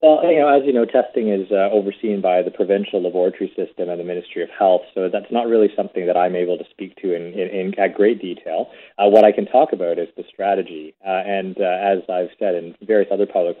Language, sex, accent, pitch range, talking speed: English, male, American, 90-115 Hz, 245 wpm